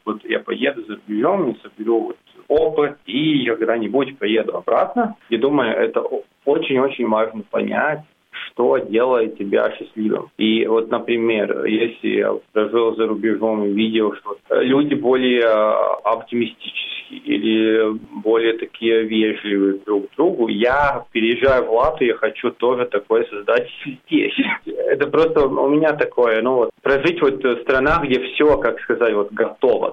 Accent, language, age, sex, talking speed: native, Russian, 20-39, male, 140 wpm